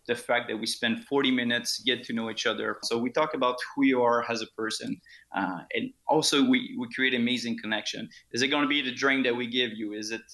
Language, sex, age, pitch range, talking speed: English, male, 20-39, 115-145 Hz, 250 wpm